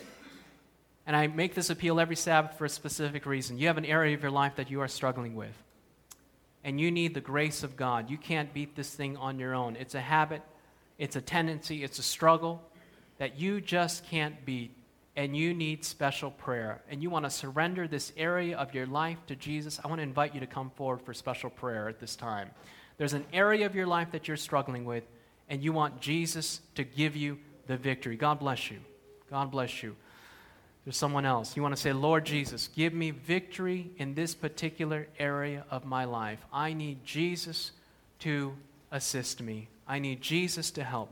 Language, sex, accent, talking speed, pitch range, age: English, male, American, 200 wpm, 125-155 Hz, 30-49